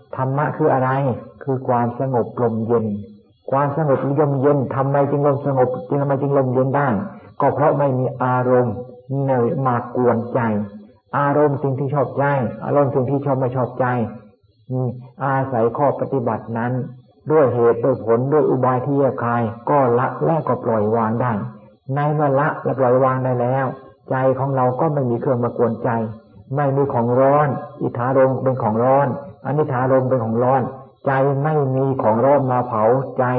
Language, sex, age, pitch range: Thai, male, 60-79, 120-135 Hz